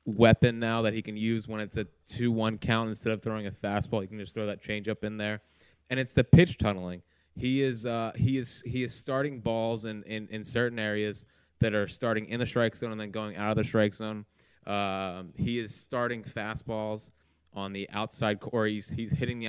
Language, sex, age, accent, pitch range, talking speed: English, male, 20-39, American, 105-120 Hz, 220 wpm